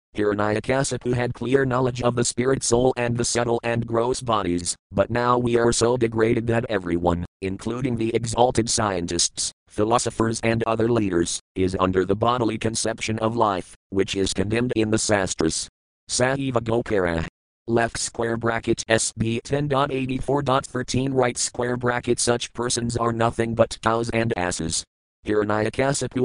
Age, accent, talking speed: 50-69, American, 140 wpm